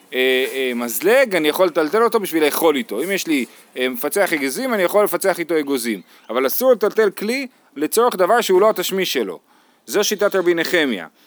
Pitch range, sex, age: 150-220 Hz, male, 30-49